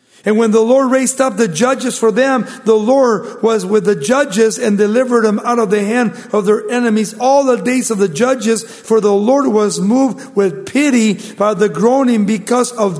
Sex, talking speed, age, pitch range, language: male, 205 wpm, 50-69, 165-220 Hz, English